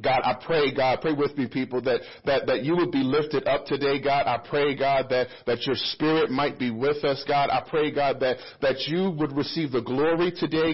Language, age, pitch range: English, 40-59, 150-200 Hz